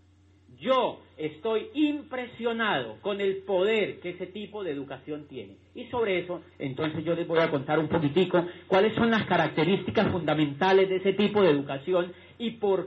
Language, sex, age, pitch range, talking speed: English, male, 40-59, 155-230 Hz, 165 wpm